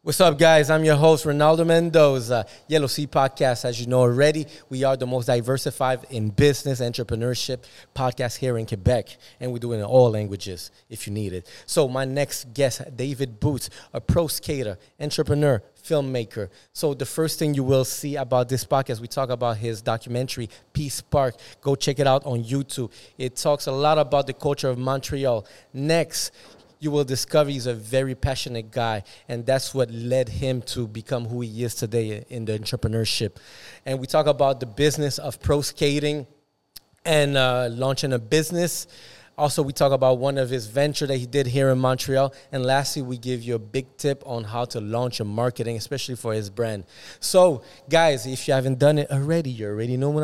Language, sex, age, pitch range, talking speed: French, male, 30-49, 120-145 Hz, 195 wpm